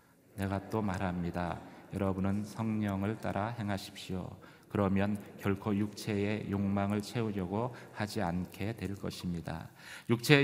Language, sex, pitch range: Korean, male, 95-115 Hz